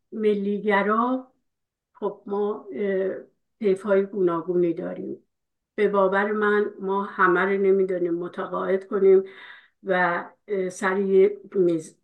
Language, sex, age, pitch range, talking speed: Persian, female, 50-69, 190-240 Hz, 90 wpm